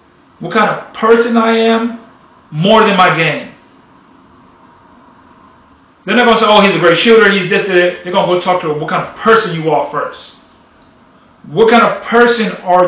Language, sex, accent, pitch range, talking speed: English, male, American, 150-200 Hz, 185 wpm